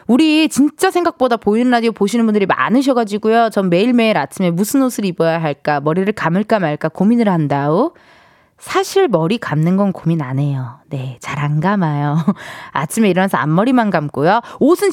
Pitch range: 185-310 Hz